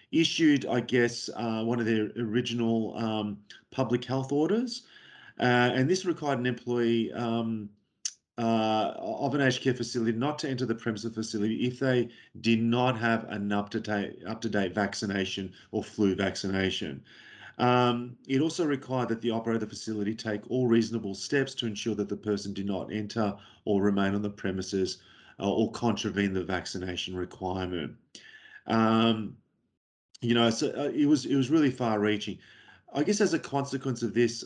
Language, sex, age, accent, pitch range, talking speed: English, male, 40-59, Australian, 105-125 Hz, 165 wpm